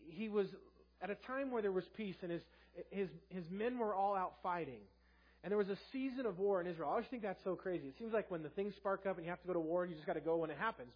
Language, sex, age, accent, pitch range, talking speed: English, male, 30-49, American, 165-195 Hz, 310 wpm